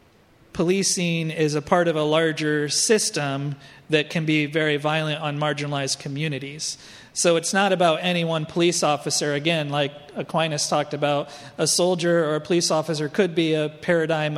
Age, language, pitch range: 40-59, English, 145-165 Hz